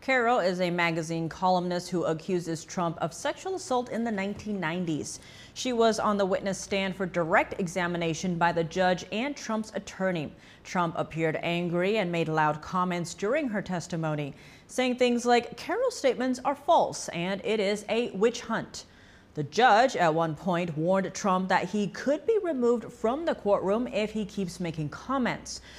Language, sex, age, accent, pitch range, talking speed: English, female, 30-49, American, 170-230 Hz, 170 wpm